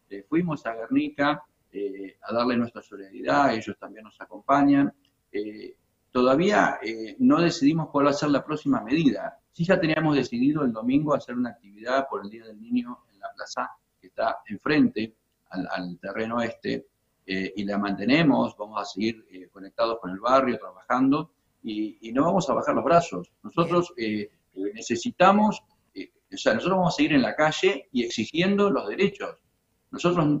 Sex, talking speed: male, 170 wpm